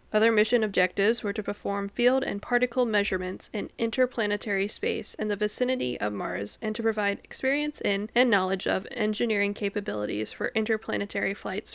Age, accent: 10-29, American